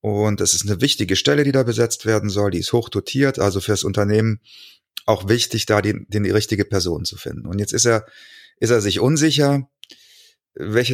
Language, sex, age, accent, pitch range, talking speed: German, male, 30-49, German, 105-130 Hz, 205 wpm